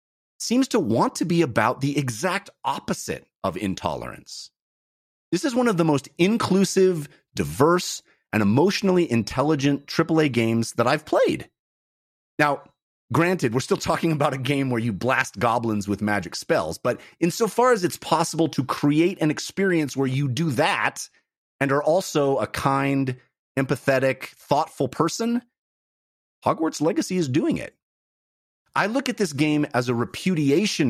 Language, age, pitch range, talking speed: English, 30-49, 120-170 Hz, 150 wpm